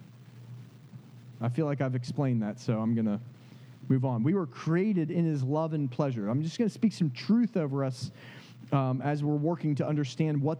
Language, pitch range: English, 125-165 Hz